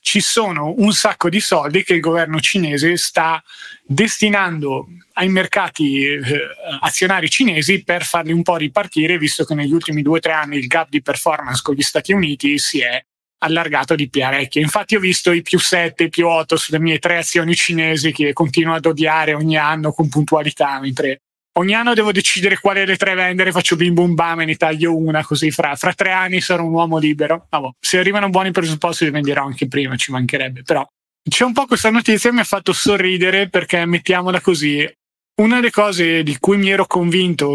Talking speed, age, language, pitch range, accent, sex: 200 wpm, 30-49, Italian, 155-180 Hz, native, male